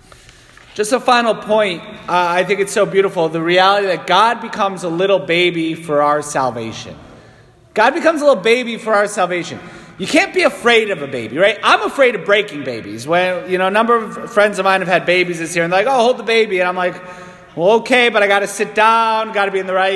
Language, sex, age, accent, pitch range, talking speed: English, male, 30-49, American, 195-285 Hz, 240 wpm